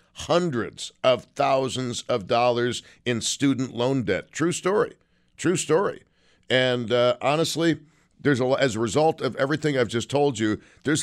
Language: English